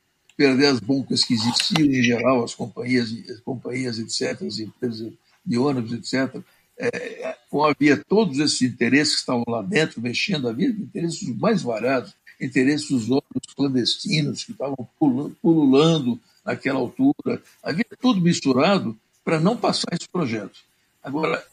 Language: Portuguese